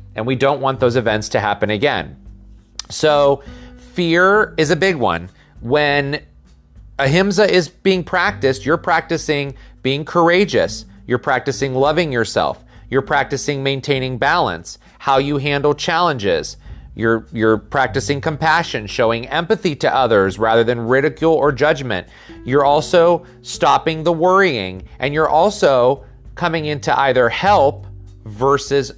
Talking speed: 130 wpm